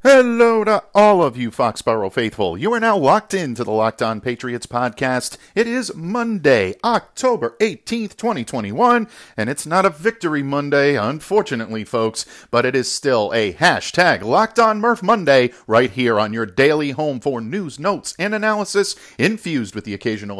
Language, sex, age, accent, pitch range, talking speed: English, male, 50-69, American, 125-195 Hz, 165 wpm